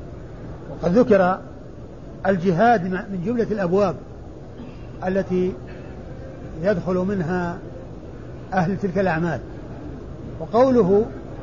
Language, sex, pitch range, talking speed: Arabic, male, 185-240 Hz, 65 wpm